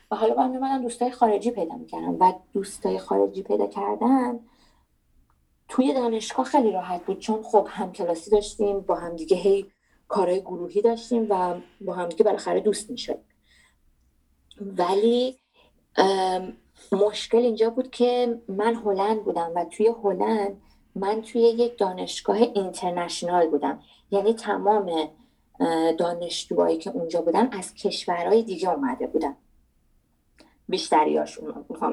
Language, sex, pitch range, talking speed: Persian, female, 185-235 Hz, 115 wpm